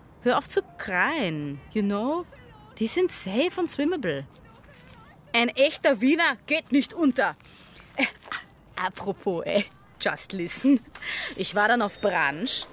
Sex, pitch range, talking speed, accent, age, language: female, 200-270 Hz, 125 wpm, German, 20-39, German